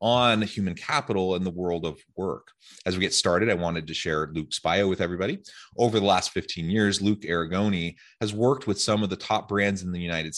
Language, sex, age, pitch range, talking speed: English, male, 30-49, 85-110 Hz, 220 wpm